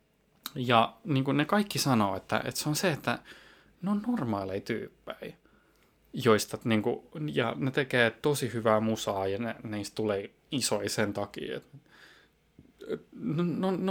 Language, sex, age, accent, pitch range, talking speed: Finnish, male, 20-39, native, 105-140 Hz, 150 wpm